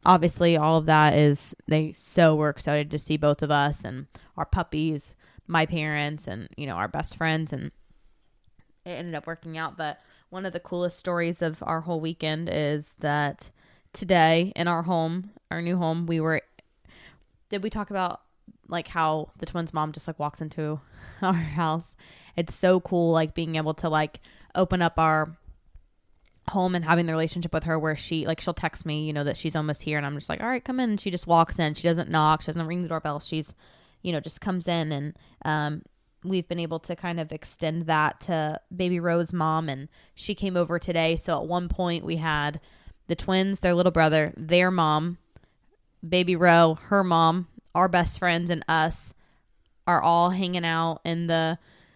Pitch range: 155-175 Hz